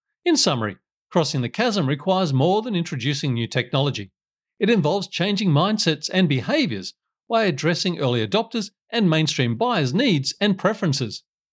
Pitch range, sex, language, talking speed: 135-205 Hz, male, English, 140 wpm